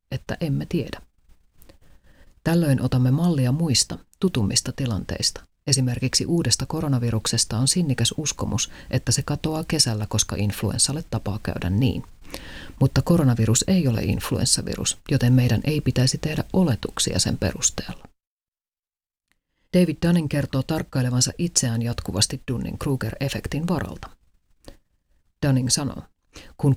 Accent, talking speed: native, 110 wpm